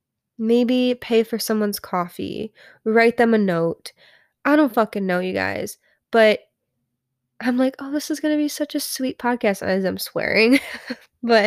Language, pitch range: English, 195-235 Hz